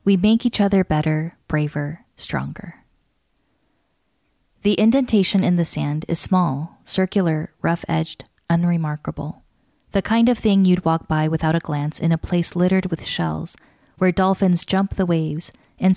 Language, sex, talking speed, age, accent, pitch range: English, female, 145 wpm, 10-29, American, 160-195 Hz